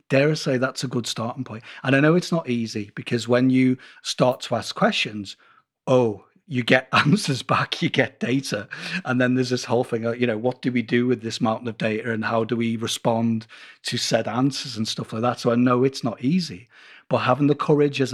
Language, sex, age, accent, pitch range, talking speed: English, male, 40-59, British, 115-135 Hz, 230 wpm